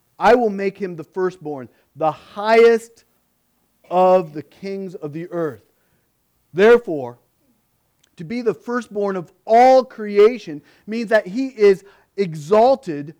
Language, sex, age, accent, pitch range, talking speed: English, male, 40-59, American, 110-180 Hz, 125 wpm